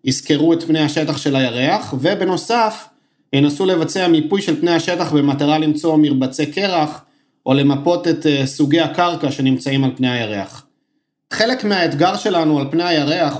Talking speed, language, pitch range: 145 wpm, Hebrew, 150-185 Hz